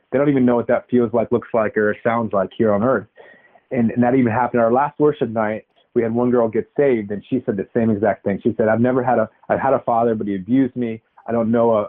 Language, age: English, 30-49